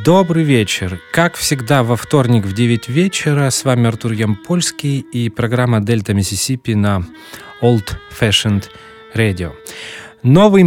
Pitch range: 110-135 Hz